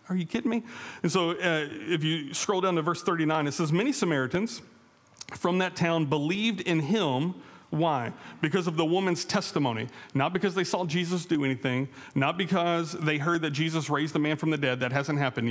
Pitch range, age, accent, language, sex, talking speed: 145-185 Hz, 40-59, American, English, male, 200 wpm